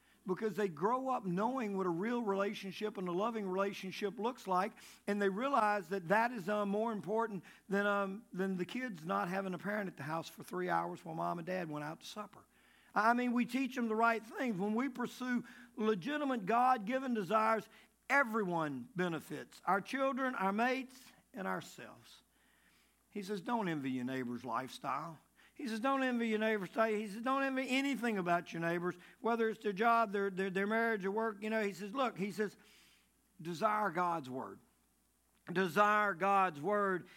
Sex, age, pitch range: male, 50-69, 185-235 Hz